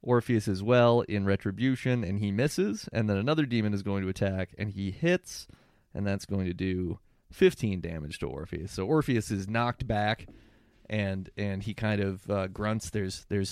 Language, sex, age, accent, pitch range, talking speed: English, male, 30-49, American, 95-115 Hz, 185 wpm